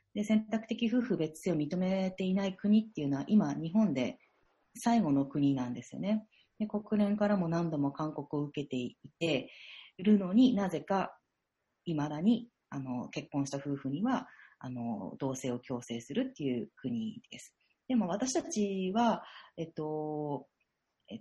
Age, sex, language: 40-59, female, Japanese